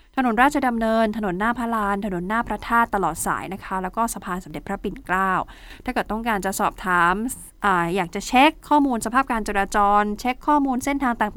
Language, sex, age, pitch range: Thai, female, 20-39, 195-250 Hz